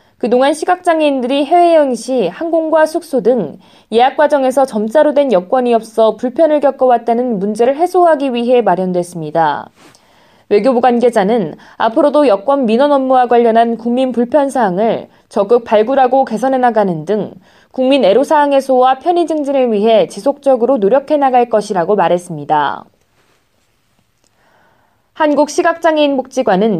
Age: 20-39